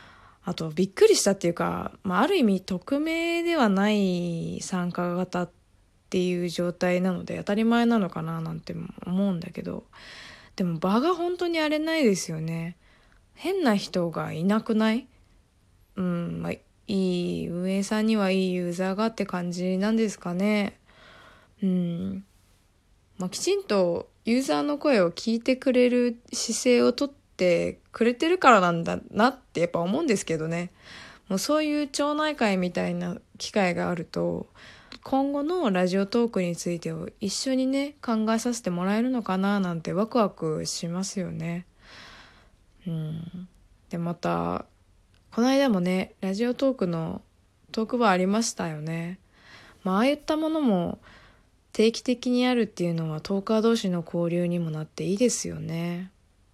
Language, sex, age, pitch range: Japanese, female, 20-39, 170-230 Hz